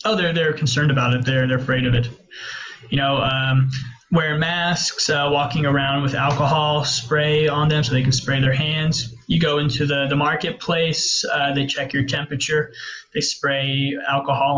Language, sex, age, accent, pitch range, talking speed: English, male, 20-39, American, 130-150 Hz, 180 wpm